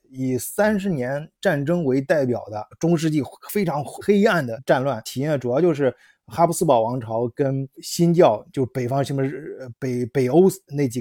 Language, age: Chinese, 20-39